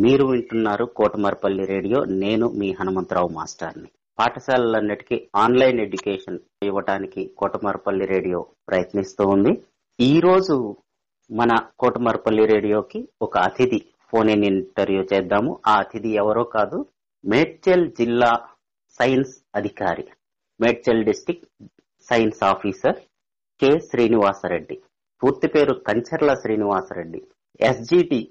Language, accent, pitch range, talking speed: Telugu, native, 105-130 Hz, 95 wpm